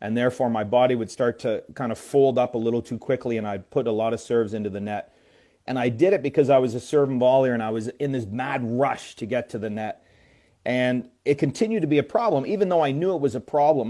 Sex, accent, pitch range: male, American, 115-145 Hz